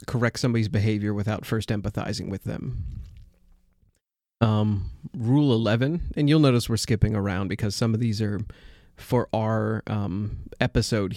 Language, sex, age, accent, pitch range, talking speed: English, male, 30-49, American, 100-115 Hz, 140 wpm